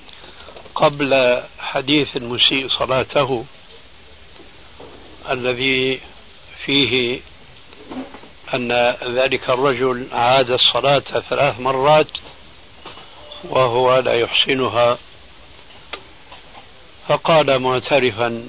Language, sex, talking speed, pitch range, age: Arabic, male, 60 wpm, 115-140 Hz, 60-79